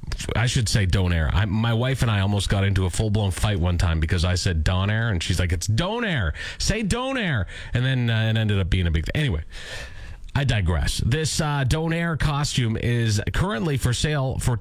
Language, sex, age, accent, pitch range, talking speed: English, male, 40-59, American, 100-160 Hz, 205 wpm